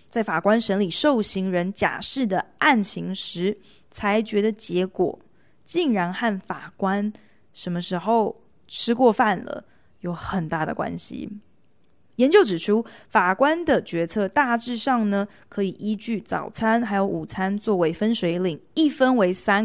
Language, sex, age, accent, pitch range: Chinese, female, 20-39, native, 185-250 Hz